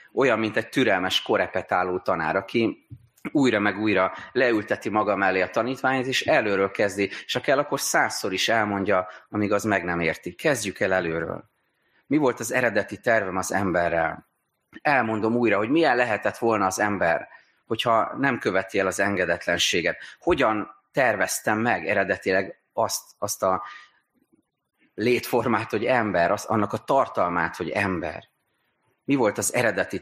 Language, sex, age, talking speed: Hungarian, male, 30-49, 145 wpm